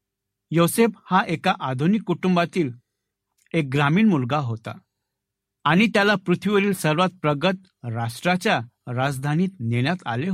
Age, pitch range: 60-79, 130-180 Hz